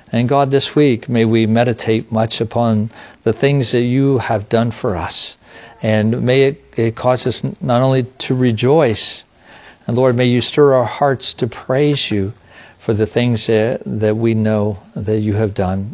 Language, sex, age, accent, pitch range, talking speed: English, male, 50-69, American, 105-120 Hz, 180 wpm